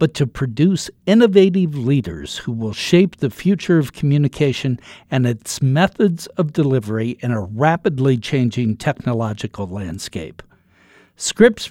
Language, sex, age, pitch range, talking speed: English, male, 60-79, 125-175 Hz, 125 wpm